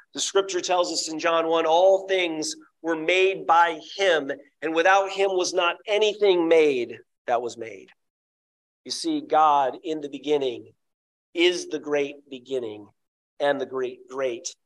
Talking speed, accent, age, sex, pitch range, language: 150 wpm, American, 40-59, male, 150-210 Hz, English